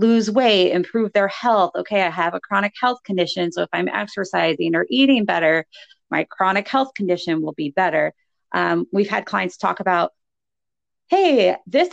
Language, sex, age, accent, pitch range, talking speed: English, female, 30-49, American, 175-265 Hz, 170 wpm